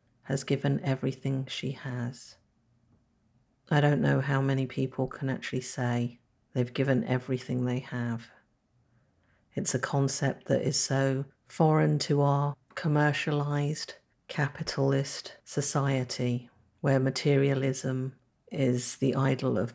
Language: English